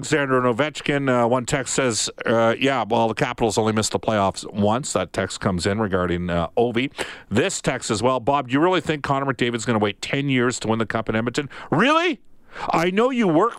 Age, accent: 50-69, American